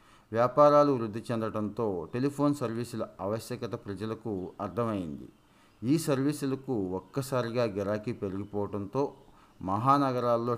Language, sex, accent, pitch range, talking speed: Telugu, male, native, 105-130 Hz, 80 wpm